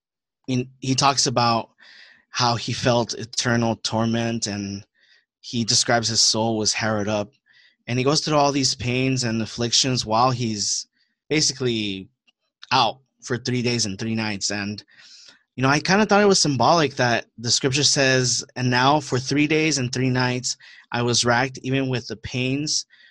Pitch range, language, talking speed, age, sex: 115-145 Hz, English, 165 wpm, 20-39, male